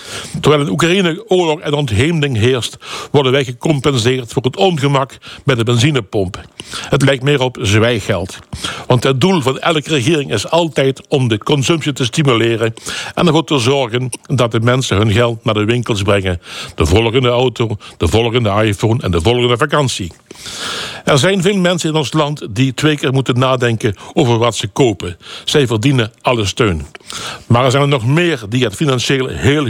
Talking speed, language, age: 175 wpm, Dutch, 60-79